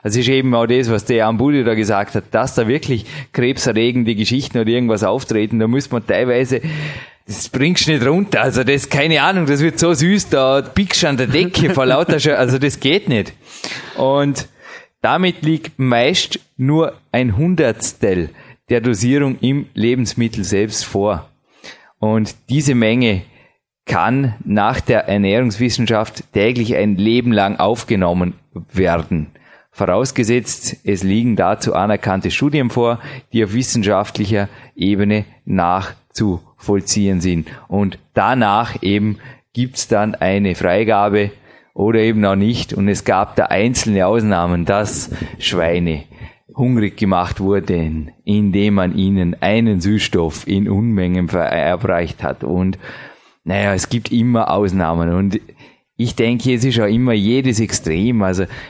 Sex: male